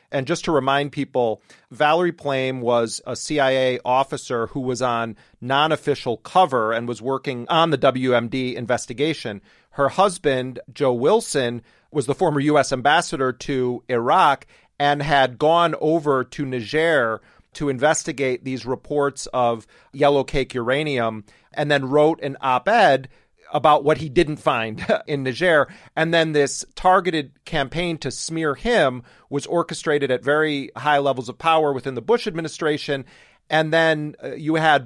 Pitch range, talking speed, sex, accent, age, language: 125-155 Hz, 145 wpm, male, American, 40-59, English